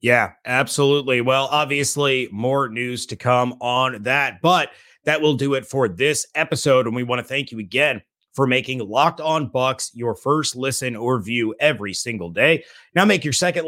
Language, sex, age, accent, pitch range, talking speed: English, male, 30-49, American, 125-155 Hz, 185 wpm